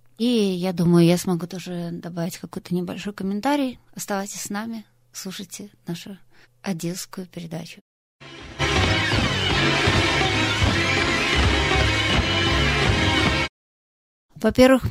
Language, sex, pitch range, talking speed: German, female, 175-200 Hz, 70 wpm